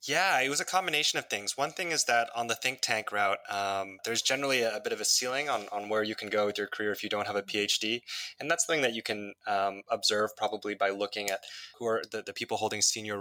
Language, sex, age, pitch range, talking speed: English, male, 20-39, 105-120 Hz, 275 wpm